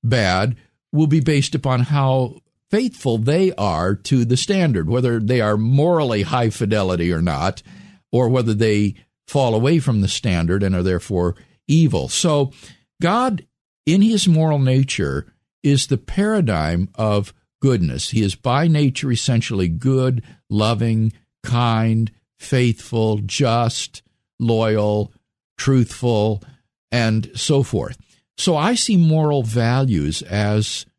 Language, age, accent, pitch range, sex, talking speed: English, 50-69, American, 105-140 Hz, male, 125 wpm